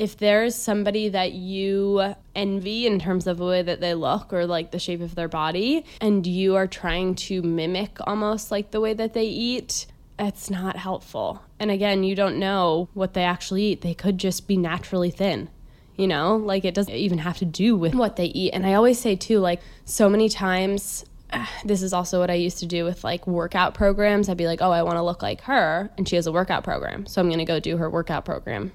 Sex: female